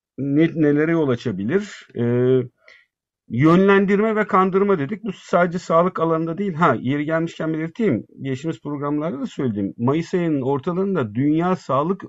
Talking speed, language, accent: 135 wpm, Turkish, native